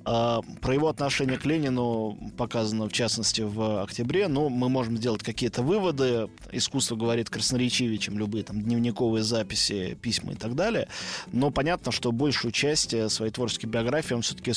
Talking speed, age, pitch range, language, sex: 150 wpm, 20-39, 115-140 Hz, Russian, male